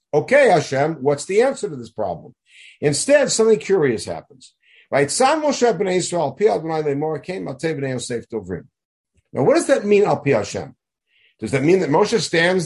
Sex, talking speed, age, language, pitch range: male, 125 wpm, 60-79, English, 140-200 Hz